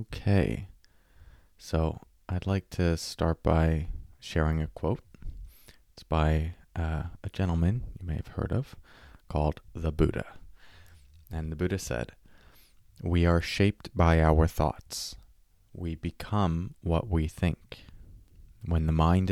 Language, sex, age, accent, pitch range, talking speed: English, male, 20-39, American, 80-90 Hz, 125 wpm